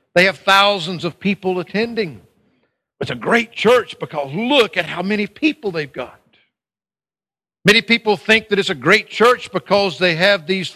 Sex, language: male, English